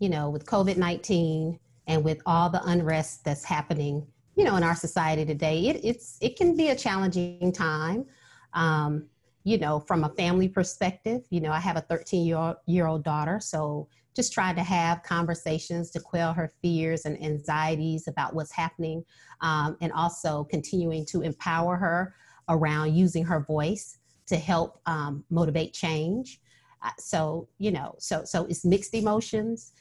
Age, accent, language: 40-59, American, English